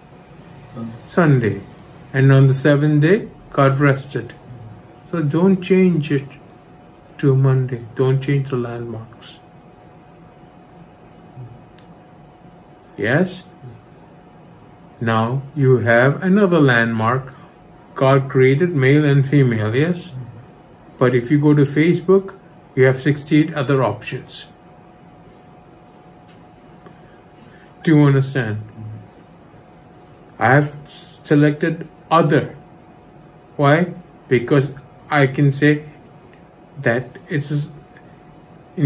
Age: 50-69